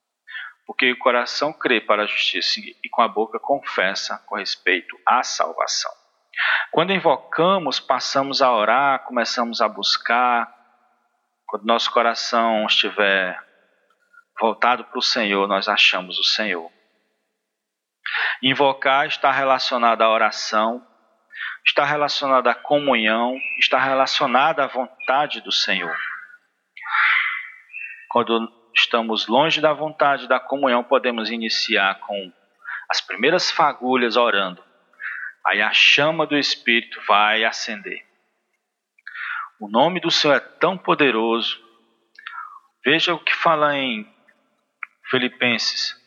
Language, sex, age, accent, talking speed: Portuguese, male, 40-59, Brazilian, 110 wpm